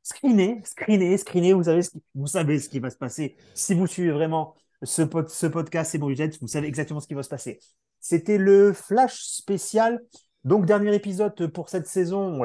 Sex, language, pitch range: male, French, 135-180 Hz